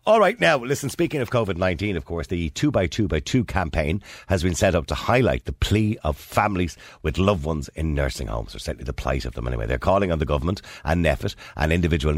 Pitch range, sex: 75-95 Hz, male